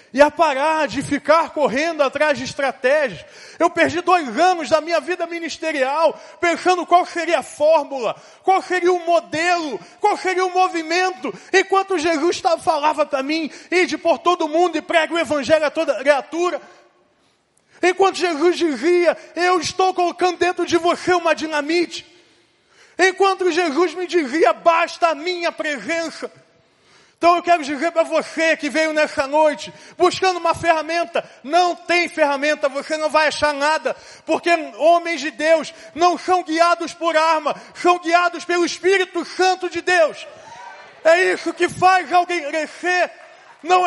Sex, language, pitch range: male, Portuguese, 305-355 Hz